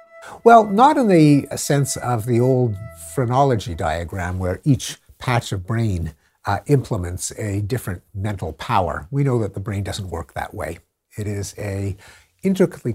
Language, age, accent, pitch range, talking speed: English, 60-79, American, 100-145 Hz, 160 wpm